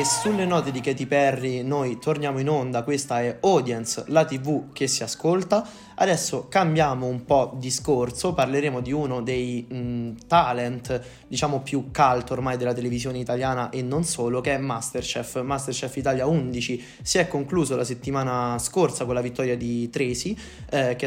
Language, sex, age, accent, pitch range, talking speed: Italian, male, 20-39, native, 125-140 Hz, 165 wpm